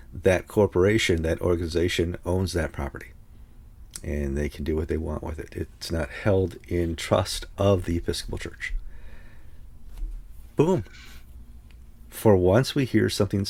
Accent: American